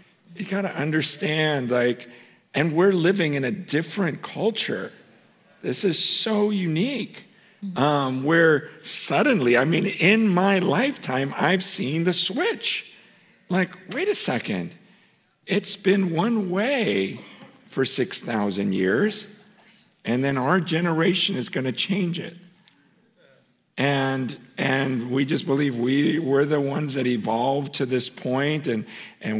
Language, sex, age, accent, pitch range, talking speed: English, male, 50-69, American, 120-190 Hz, 130 wpm